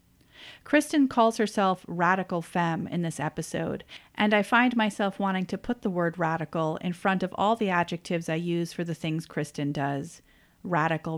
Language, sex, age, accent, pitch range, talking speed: English, female, 30-49, American, 160-190 Hz, 170 wpm